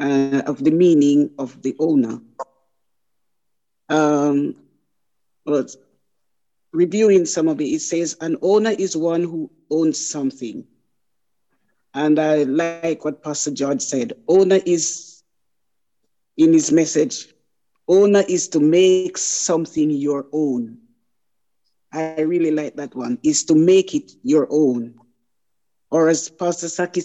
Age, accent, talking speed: 50-69, Nigerian, 125 wpm